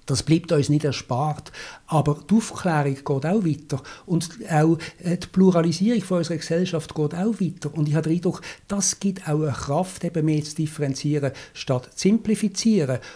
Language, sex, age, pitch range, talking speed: German, male, 60-79, 140-175 Hz, 160 wpm